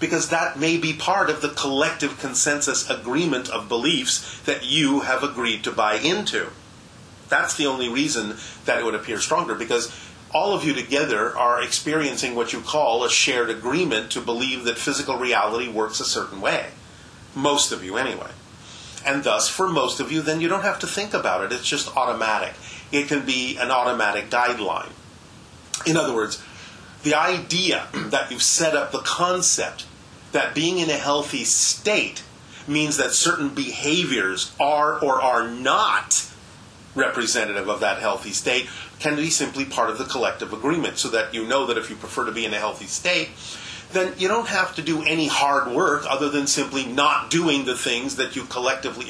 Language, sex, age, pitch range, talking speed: German, male, 40-59, 125-155 Hz, 180 wpm